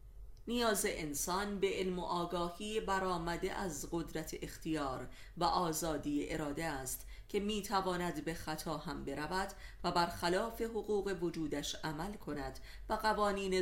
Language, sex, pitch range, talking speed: Persian, female, 150-190 Hz, 130 wpm